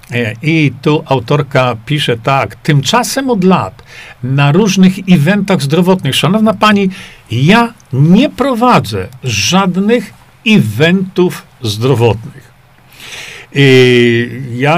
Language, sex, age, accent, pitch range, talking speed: Polish, male, 50-69, native, 130-190 Hz, 85 wpm